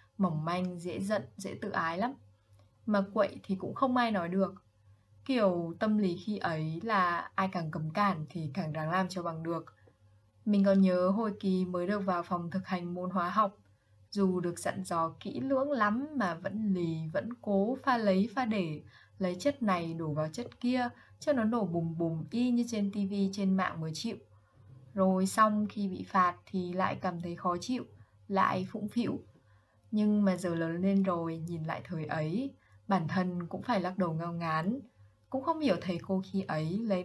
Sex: female